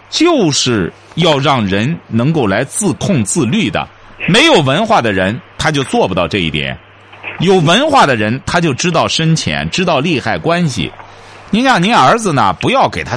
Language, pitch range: Chinese, 120-195 Hz